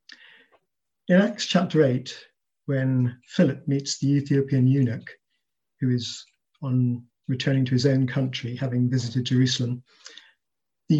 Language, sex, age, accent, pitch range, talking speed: English, male, 50-69, British, 125-155 Hz, 120 wpm